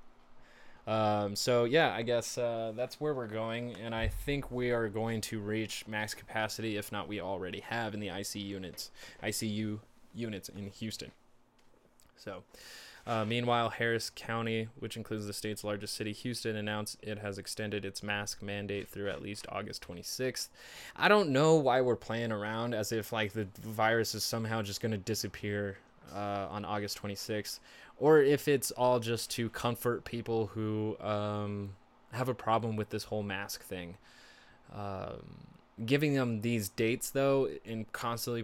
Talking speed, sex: 160 wpm, male